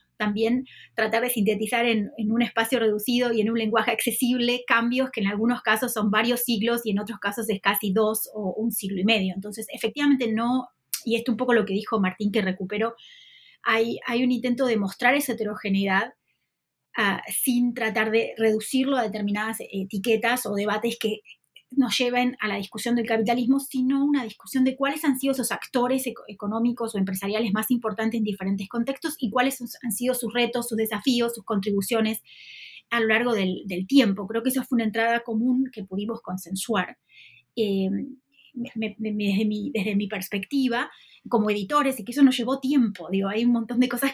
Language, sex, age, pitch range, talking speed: Spanish, female, 20-39, 215-250 Hz, 185 wpm